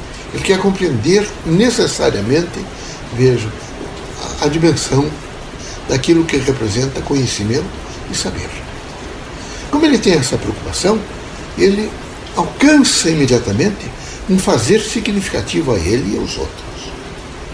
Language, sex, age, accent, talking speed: Portuguese, male, 60-79, Brazilian, 100 wpm